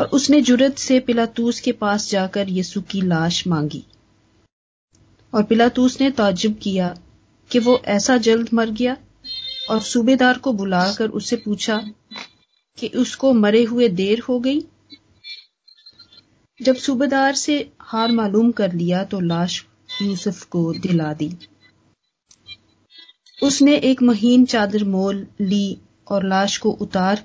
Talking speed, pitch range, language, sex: 125 wpm, 195-250 Hz, Hindi, female